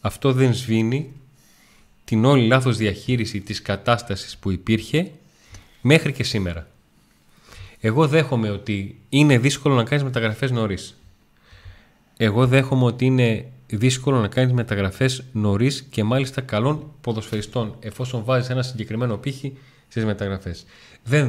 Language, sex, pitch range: Greek, male, 100-130 Hz